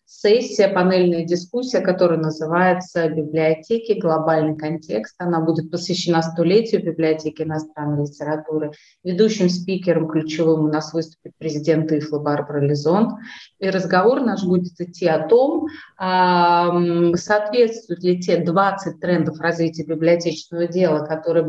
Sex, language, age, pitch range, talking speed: female, English, 30-49, 160-195 Hz, 115 wpm